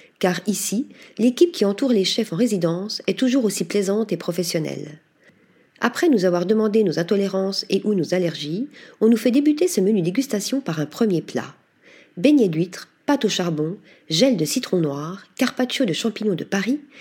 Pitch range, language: 175-245 Hz, French